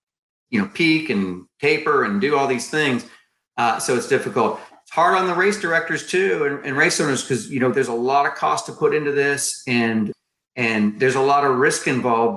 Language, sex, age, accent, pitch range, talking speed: English, male, 40-59, American, 120-155 Hz, 220 wpm